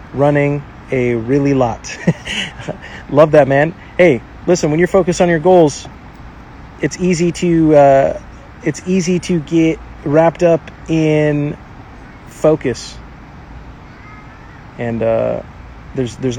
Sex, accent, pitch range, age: male, American, 120-150 Hz, 30-49